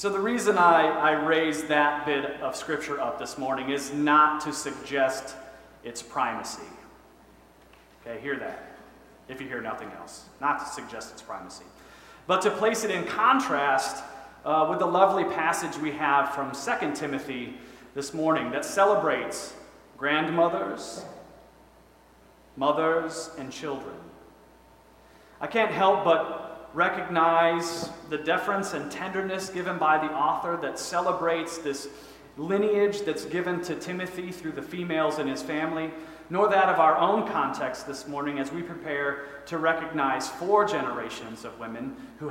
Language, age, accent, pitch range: English, 30-49, American, 140-170 Hz